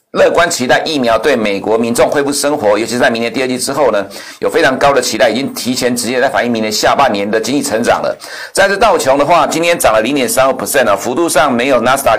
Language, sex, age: Chinese, male, 50-69